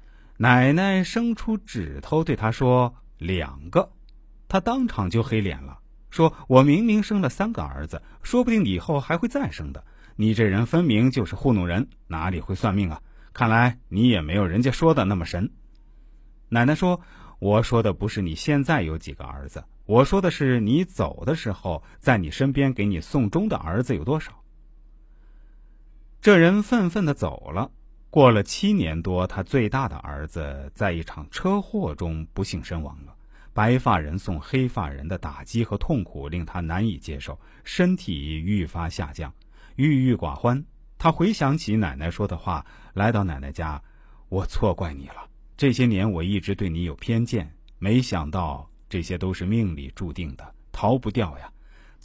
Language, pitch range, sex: Chinese, 85-130 Hz, male